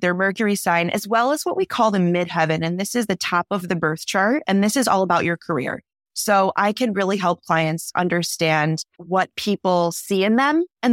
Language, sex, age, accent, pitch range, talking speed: English, female, 20-39, American, 170-200 Hz, 220 wpm